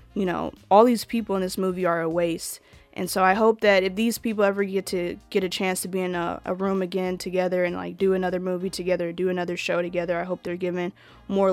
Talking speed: 250 wpm